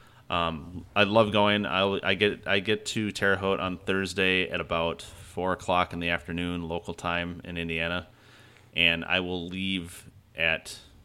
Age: 30-49